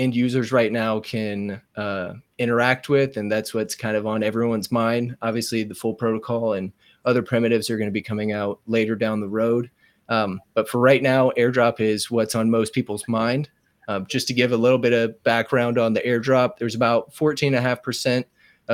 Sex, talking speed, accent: male, 190 wpm, American